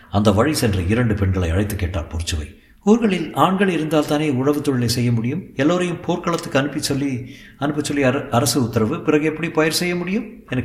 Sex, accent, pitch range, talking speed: male, native, 105-140 Hz, 165 wpm